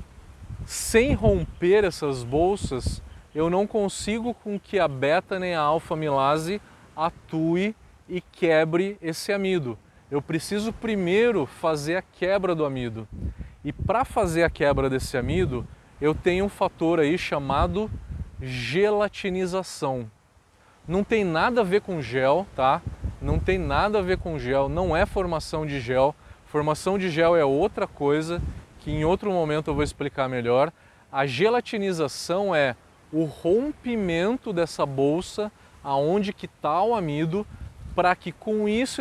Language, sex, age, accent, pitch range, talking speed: Portuguese, male, 20-39, Brazilian, 140-195 Hz, 140 wpm